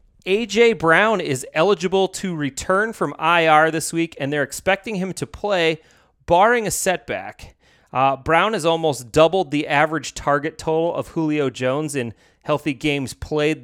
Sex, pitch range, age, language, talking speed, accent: male, 125-165 Hz, 30-49, English, 155 wpm, American